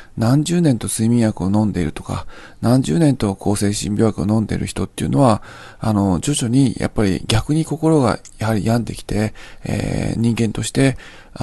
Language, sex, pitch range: Japanese, male, 100-130 Hz